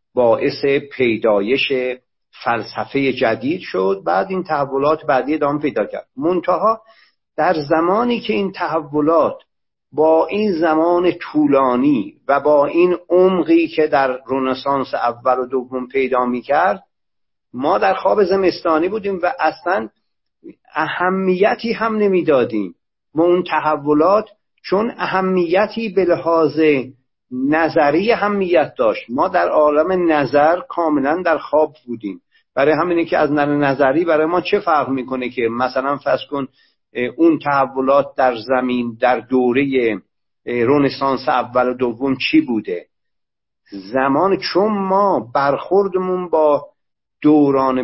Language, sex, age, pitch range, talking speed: Persian, male, 50-69, 130-180 Hz, 120 wpm